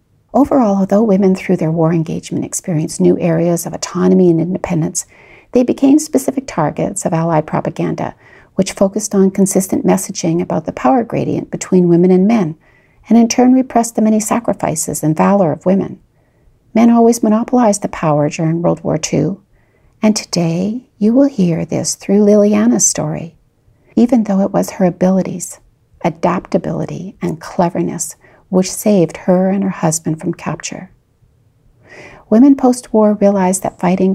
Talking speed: 150 wpm